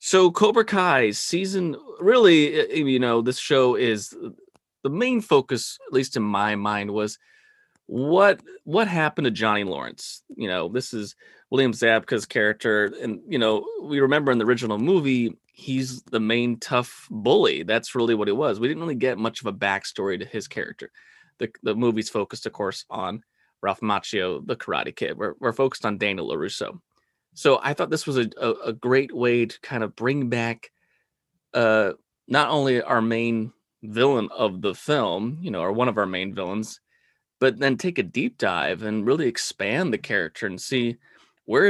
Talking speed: 180 wpm